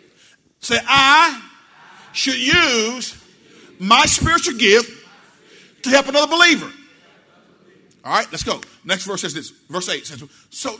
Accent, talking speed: American, 130 wpm